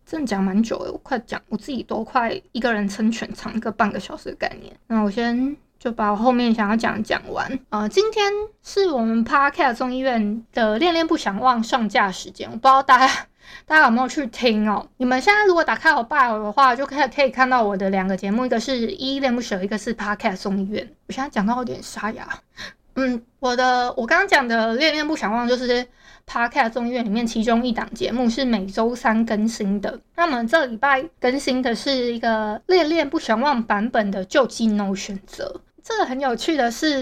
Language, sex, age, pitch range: Chinese, female, 20-39, 220-280 Hz